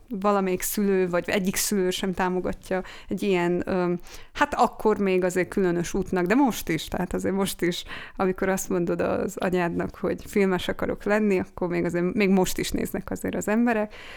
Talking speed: 175 wpm